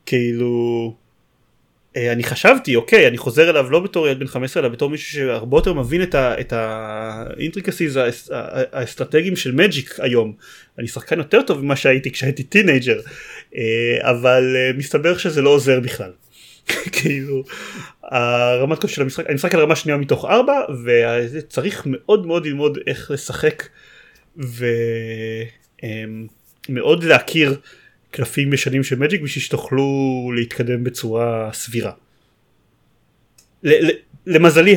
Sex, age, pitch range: male, 30-49, 120-155 Hz